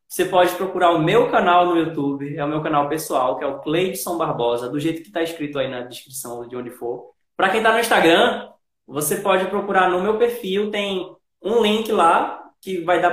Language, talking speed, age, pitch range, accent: Portuguese, 215 wpm, 20-39, 150-220 Hz, Brazilian